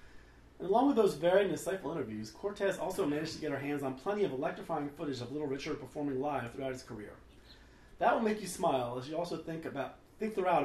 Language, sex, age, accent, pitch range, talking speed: English, male, 30-49, American, 130-175 Hz, 225 wpm